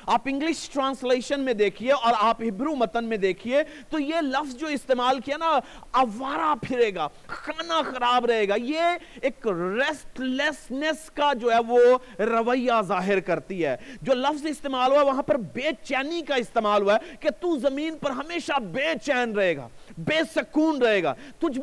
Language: Urdu